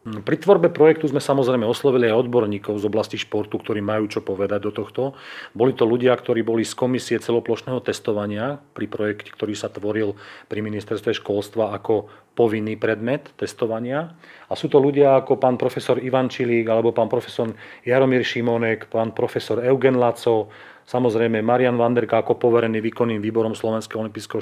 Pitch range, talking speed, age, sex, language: 110-130 Hz, 160 wpm, 40-59, male, Slovak